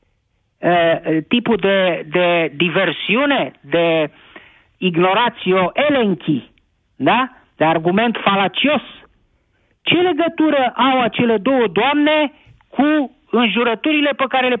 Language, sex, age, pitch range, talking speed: Romanian, male, 50-69, 180-280 Hz, 90 wpm